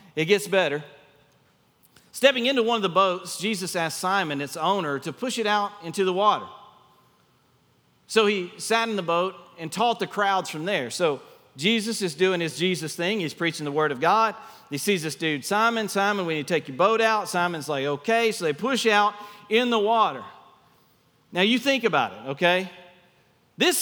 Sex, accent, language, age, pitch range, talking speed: male, American, English, 40-59, 180-230 Hz, 190 wpm